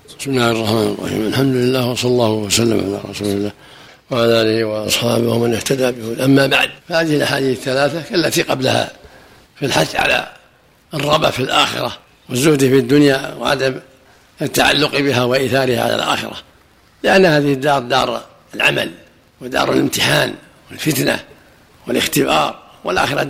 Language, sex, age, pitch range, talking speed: Arabic, male, 60-79, 125-145 Hz, 130 wpm